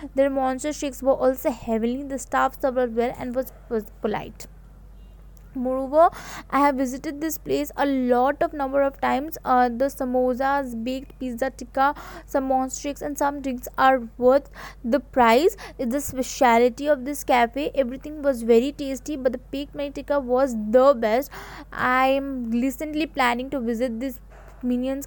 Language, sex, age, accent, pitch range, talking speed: English, female, 20-39, Indian, 250-285 Hz, 160 wpm